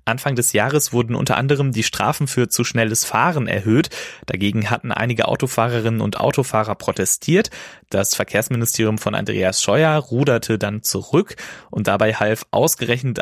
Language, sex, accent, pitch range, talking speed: German, male, German, 105-140 Hz, 145 wpm